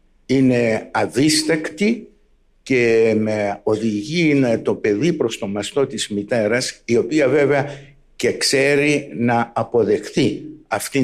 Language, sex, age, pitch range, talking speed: Greek, male, 60-79, 120-160 Hz, 110 wpm